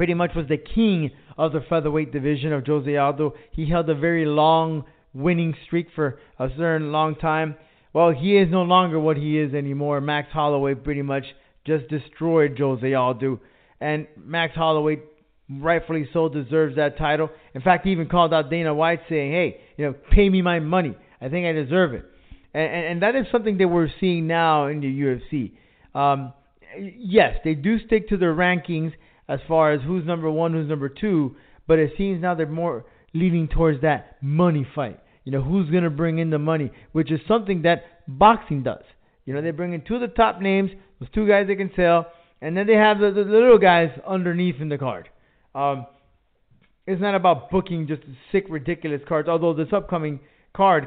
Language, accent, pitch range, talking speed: English, American, 145-175 Hz, 195 wpm